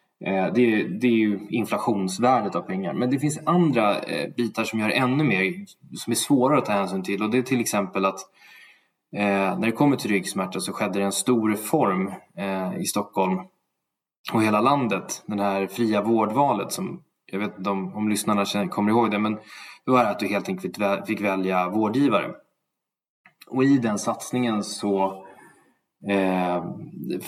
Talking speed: 165 wpm